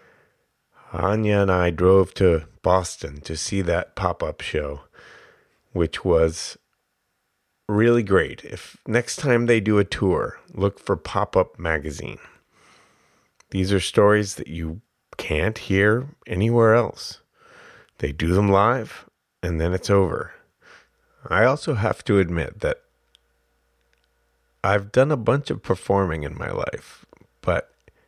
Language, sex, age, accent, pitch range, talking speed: English, male, 30-49, American, 80-100 Hz, 125 wpm